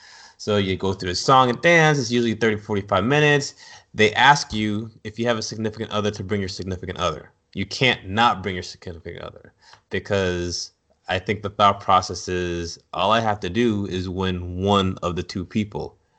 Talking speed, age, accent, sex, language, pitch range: 195 wpm, 20-39, American, male, English, 95-120 Hz